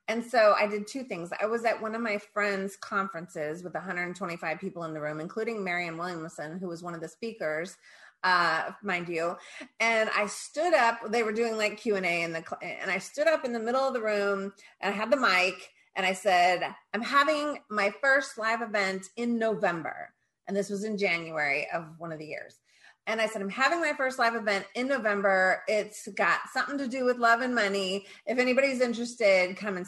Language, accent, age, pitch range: English, American, 30-49, 180-230 Hz